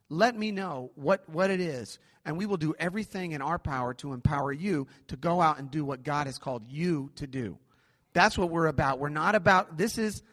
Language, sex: English, male